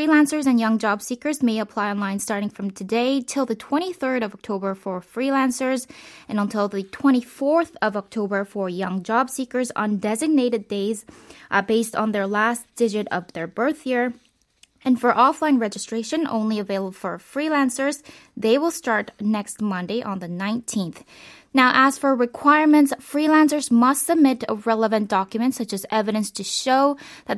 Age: 20-39